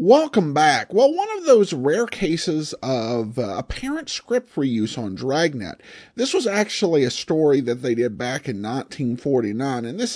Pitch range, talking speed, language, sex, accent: 130-200 Hz, 165 wpm, English, male, American